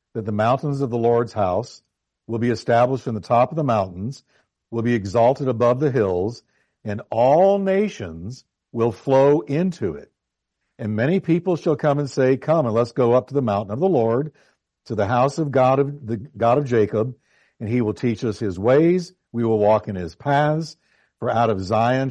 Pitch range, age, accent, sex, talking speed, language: 110-140 Hz, 50-69, American, male, 200 wpm, English